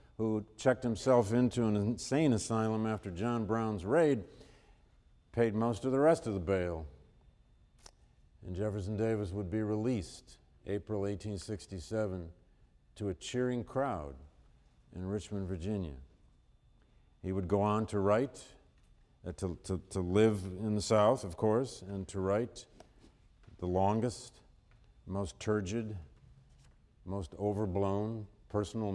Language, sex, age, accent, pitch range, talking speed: English, male, 50-69, American, 95-120 Hz, 125 wpm